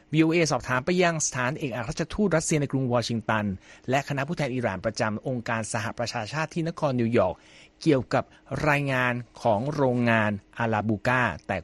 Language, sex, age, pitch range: Thai, male, 60-79, 110-145 Hz